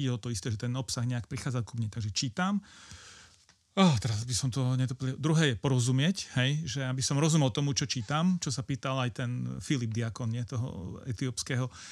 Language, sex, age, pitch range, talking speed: Slovak, male, 40-59, 115-140 Hz, 195 wpm